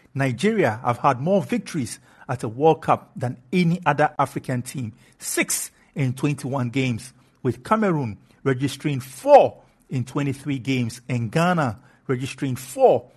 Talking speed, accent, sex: 130 wpm, Nigerian, male